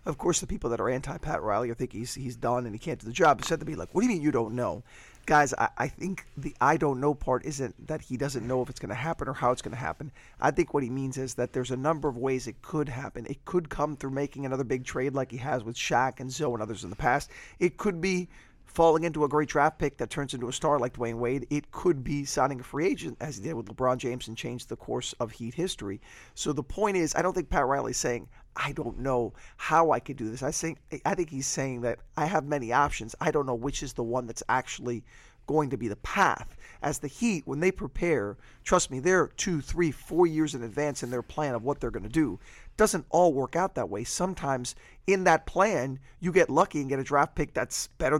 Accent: American